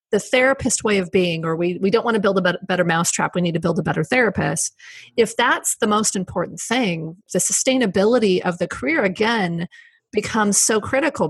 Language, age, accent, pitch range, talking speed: English, 30-49, American, 175-220 Hz, 195 wpm